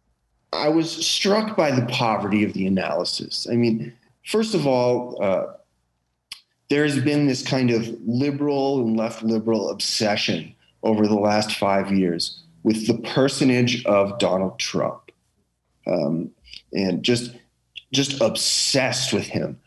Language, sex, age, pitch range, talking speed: English, male, 30-49, 100-125 Hz, 130 wpm